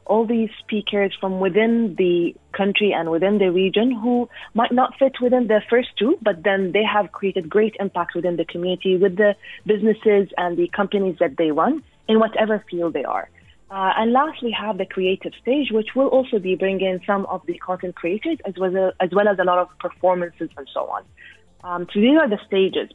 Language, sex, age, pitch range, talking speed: English, female, 20-39, 175-210 Hz, 205 wpm